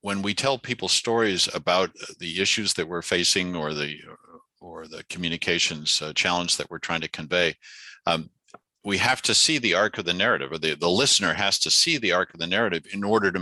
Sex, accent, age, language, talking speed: male, American, 50-69, English, 210 wpm